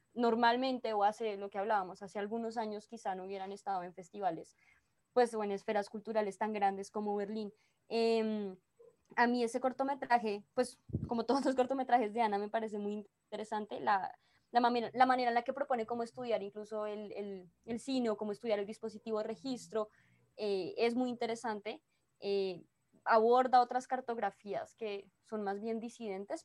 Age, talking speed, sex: 20-39, 170 wpm, female